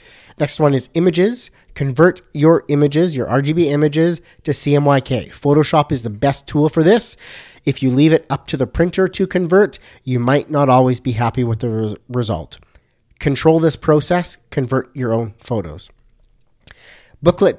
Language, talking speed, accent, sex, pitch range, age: English, 160 wpm, American, male, 120-145 Hz, 30-49